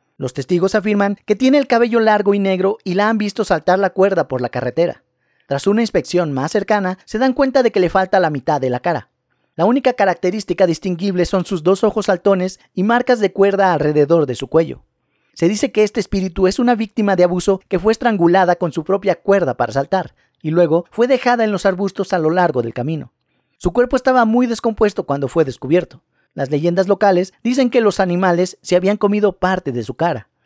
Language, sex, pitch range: Spanish, male, 165-210 Hz